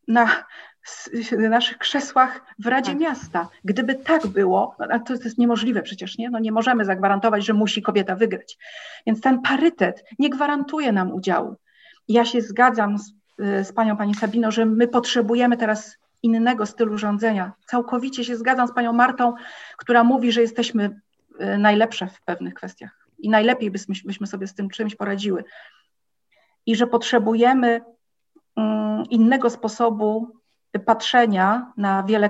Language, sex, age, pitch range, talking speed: Polish, female, 40-59, 200-240 Hz, 140 wpm